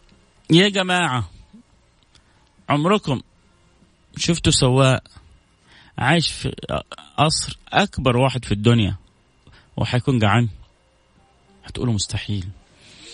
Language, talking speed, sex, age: Arabic, 75 wpm, male, 30-49